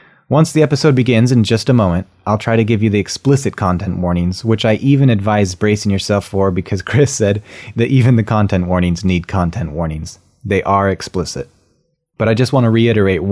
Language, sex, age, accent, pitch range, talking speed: English, male, 30-49, American, 90-110 Hz, 200 wpm